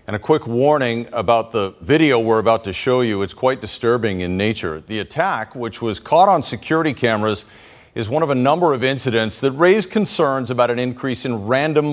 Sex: male